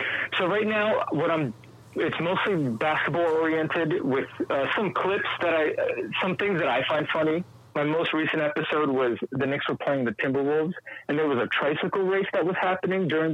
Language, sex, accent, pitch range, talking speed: English, male, American, 145-185 Hz, 195 wpm